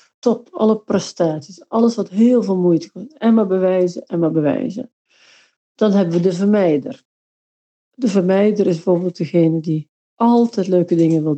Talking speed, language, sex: 160 wpm, Dutch, female